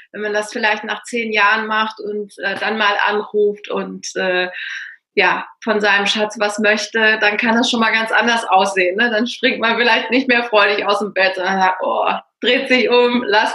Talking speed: 205 wpm